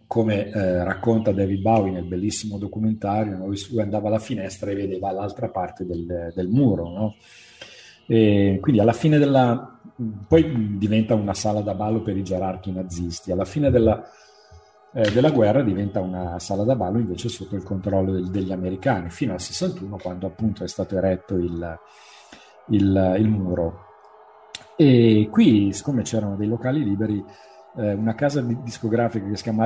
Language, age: Italian, 40-59